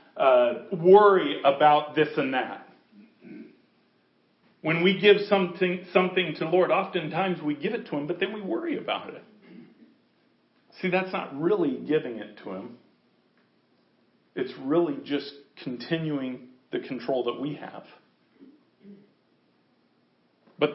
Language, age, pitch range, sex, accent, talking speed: English, 40-59, 165-210 Hz, male, American, 130 wpm